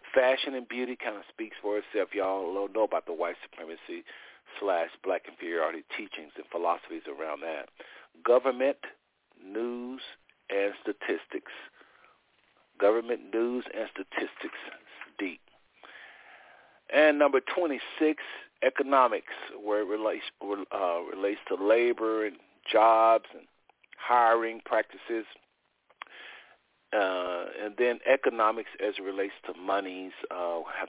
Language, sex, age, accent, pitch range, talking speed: English, male, 50-69, American, 100-130 Hz, 115 wpm